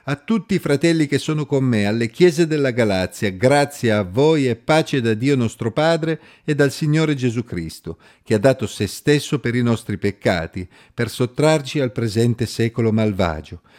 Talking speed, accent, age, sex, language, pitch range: 180 wpm, native, 50-69, male, Italian, 105-145 Hz